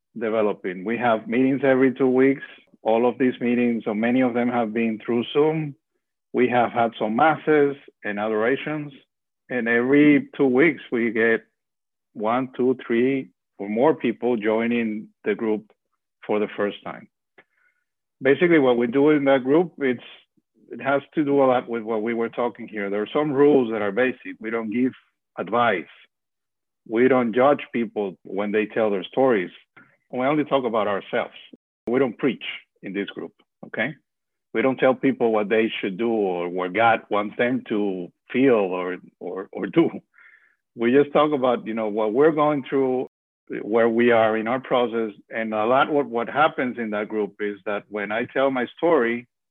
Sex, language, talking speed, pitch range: male, English, 180 wpm, 110-135 Hz